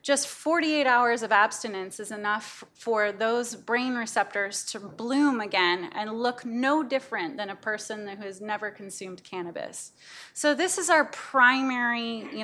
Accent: American